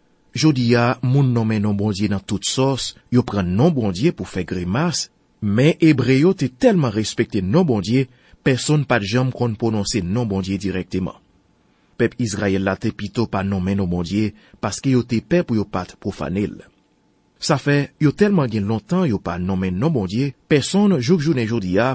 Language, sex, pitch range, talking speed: French, male, 100-135 Hz, 165 wpm